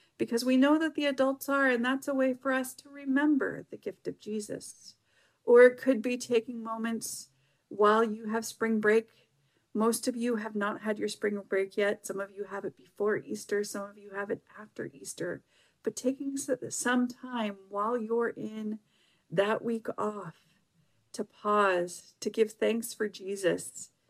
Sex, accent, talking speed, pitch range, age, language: female, American, 175 wpm, 205-245 Hz, 40-59, English